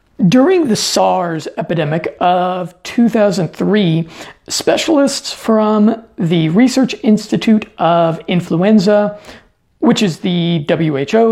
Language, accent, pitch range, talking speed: English, American, 175-220 Hz, 90 wpm